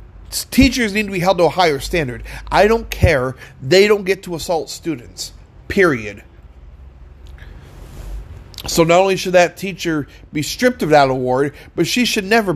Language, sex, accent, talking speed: English, male, American, 160 wpm